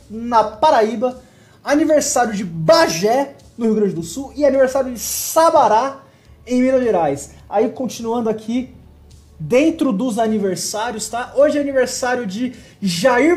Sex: male